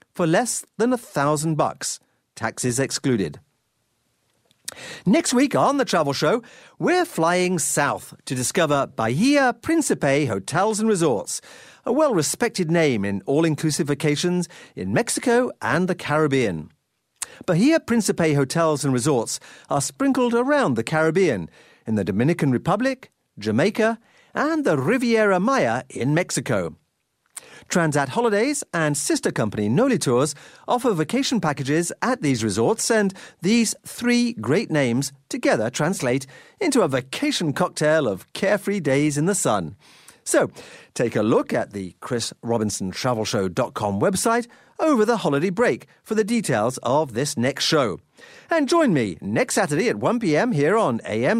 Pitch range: 140-235 Hz